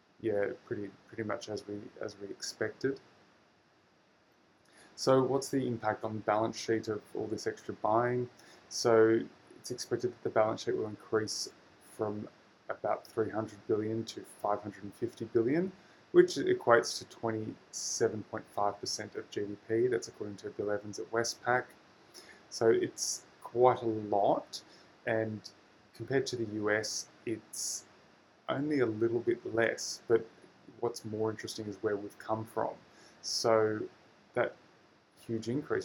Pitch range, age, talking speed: 105-115 Hz, 20-39, 135 wpm